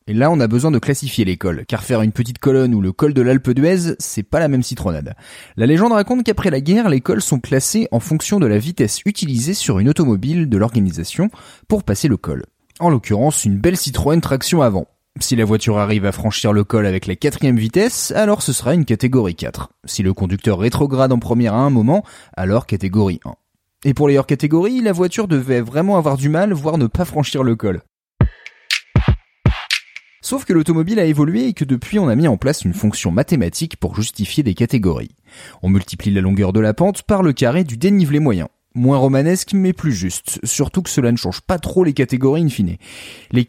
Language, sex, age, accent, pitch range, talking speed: French, male, 30-49, French, 110-165 Hz, 215 wpm